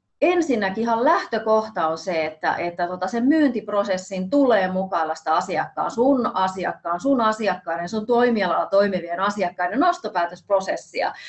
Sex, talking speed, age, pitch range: female, 130 wpm, 30-49, 180-240 Hz